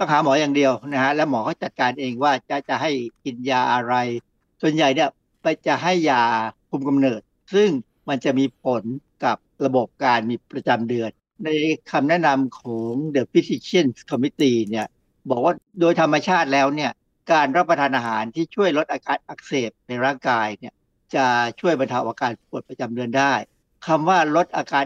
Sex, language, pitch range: male, Thai, 125-155 Hz